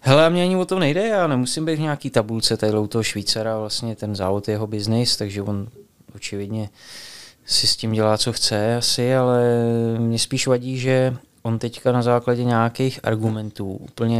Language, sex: Czech, male